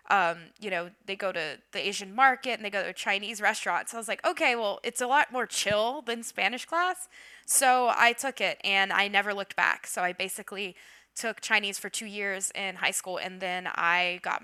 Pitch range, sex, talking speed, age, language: 185-225 Hz, female, 225 wpm, 10-29, English